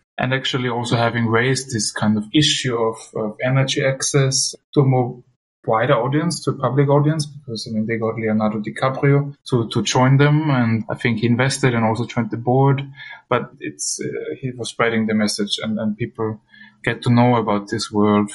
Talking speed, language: 195 wpm, English